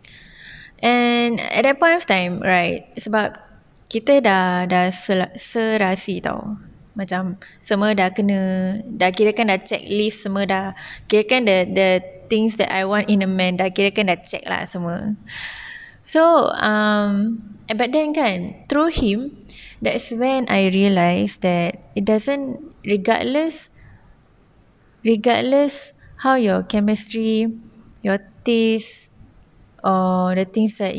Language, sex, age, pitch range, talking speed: Malay, female, 20-39, 185-225 Hz, 130 wpm